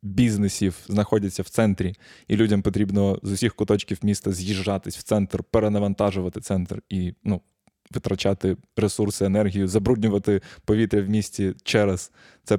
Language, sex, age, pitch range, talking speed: Ukrainian, male, 20-39, 100-115 Hz, 130 wpm